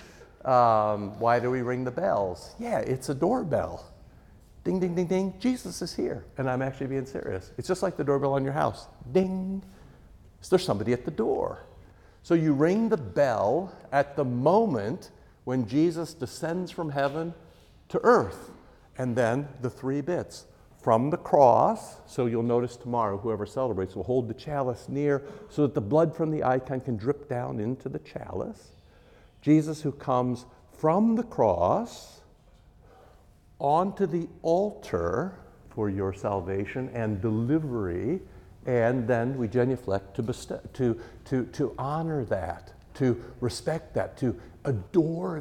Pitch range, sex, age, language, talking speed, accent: 120-165 Hz, male, 60-79, English, 150 wpm, American